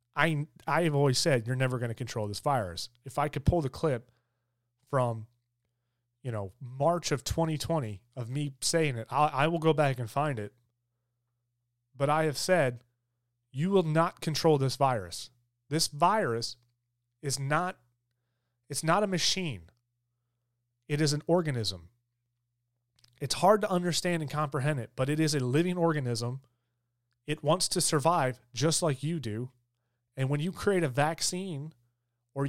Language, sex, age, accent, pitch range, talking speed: English, male, 30-49, American, 120-150 Hz, 160 wpm